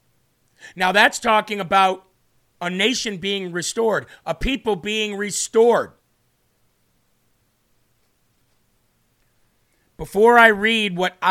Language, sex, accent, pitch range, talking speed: English, male, American, 165-205 Hz, 85 wpm